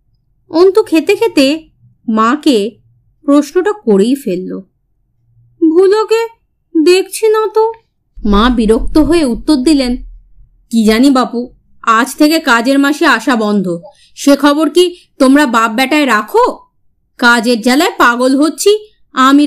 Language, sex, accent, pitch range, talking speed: Bengali, female, native, 225-340 Hz, 105 wpm